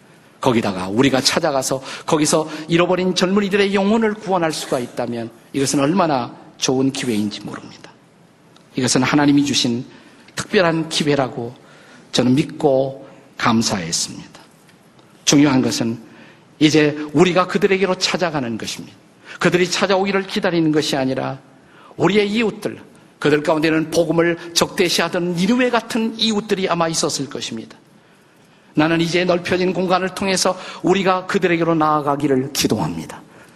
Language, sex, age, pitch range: Korean, male, 50-69, 150-190 Hz